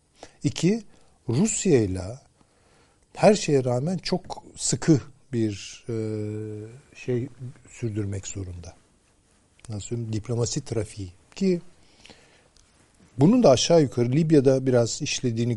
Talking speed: 90 wpm